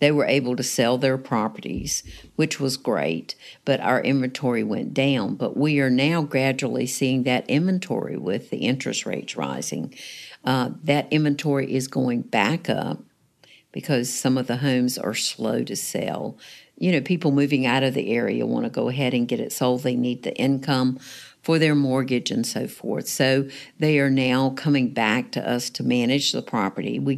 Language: English